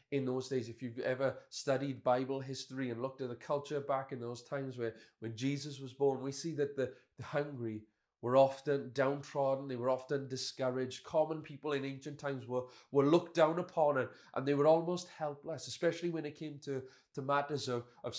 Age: 30-49